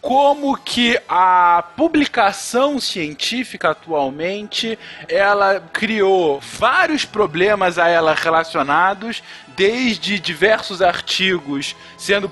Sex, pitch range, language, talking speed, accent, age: male, 170-215 Hz, Portuguese, 85 wpm, Brazilian, 20-39